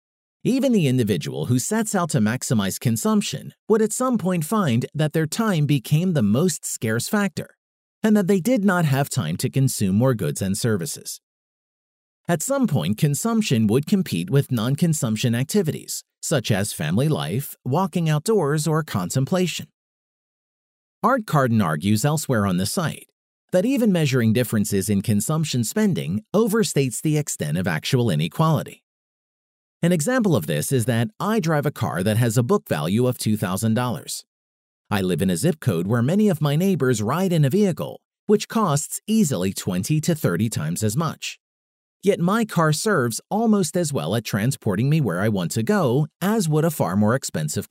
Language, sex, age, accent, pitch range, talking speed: English, male, 40-59, American, 125-195 Hz, 170 wpm